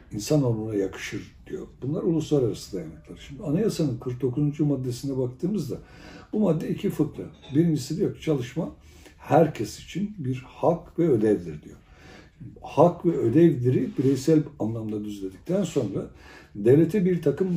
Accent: native